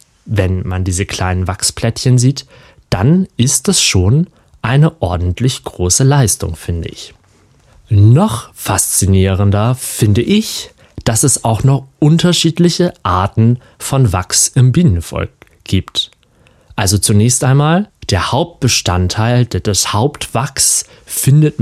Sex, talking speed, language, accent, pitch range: male, 110 wpm, German, German, 95-135 Hz